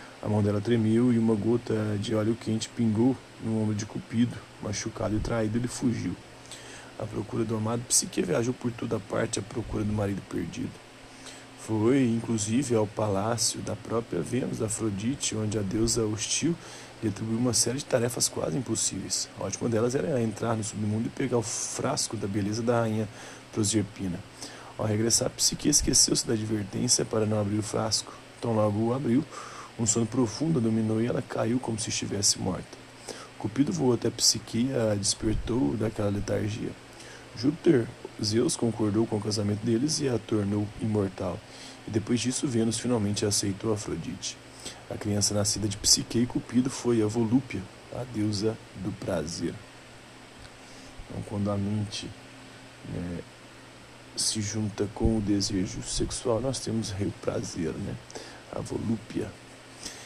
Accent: Brazilian